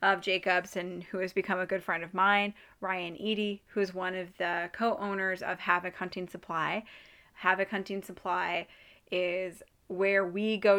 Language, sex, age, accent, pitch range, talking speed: English, female, 20-39, American, 180-200 Hz, 160 wpm